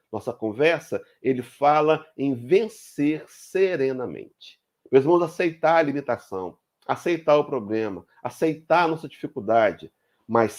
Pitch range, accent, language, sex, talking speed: 125-165 Hz, Brazilian, Portuguese, male, 115 wpm